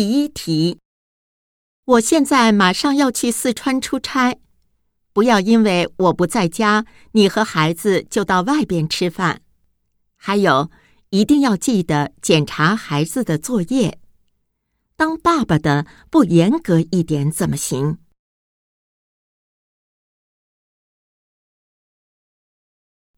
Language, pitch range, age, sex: Japanese, 155-245 Hz, 50-69, female